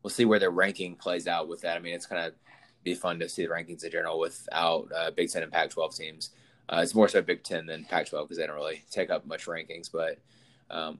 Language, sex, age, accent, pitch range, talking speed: English, male, 20-39, American, 90-115 Hz, 265 wpm